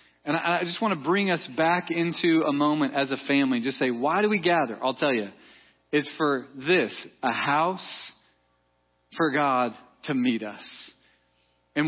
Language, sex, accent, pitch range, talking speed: English, male, American, 140-190 Hz, 170 wpm